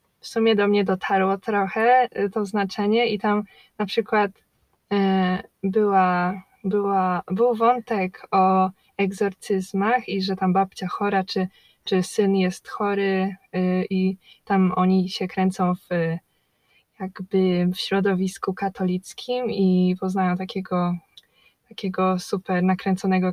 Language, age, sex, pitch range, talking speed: Polish, 20-39, female, 190-220 Hz, 115 wpm